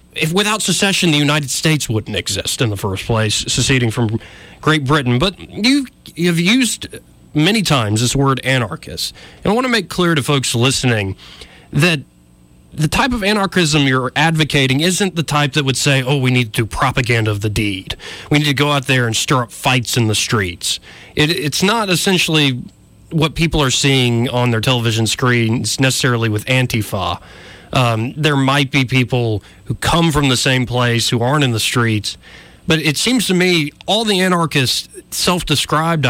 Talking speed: 180 wpm